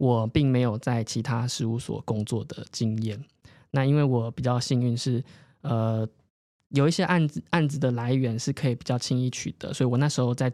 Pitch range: 120-145 Hz